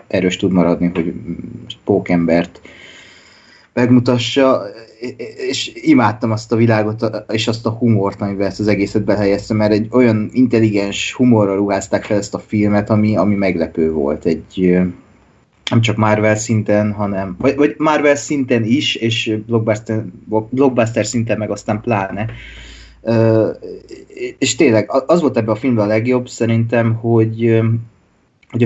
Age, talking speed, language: 20-39, 135 wpm, Hungarian